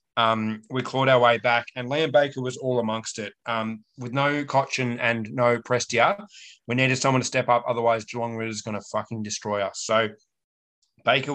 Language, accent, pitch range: English, Australian, 110-130 Hz